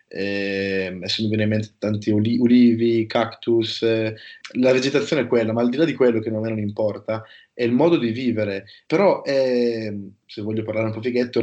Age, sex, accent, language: 20-39, male, native, Italian